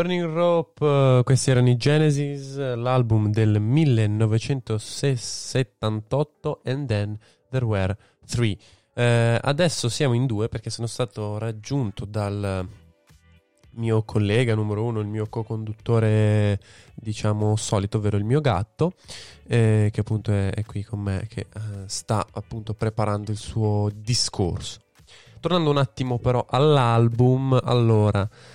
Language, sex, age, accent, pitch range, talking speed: Italian, male, 20-39, native, 105-130 Hz, 125 wpm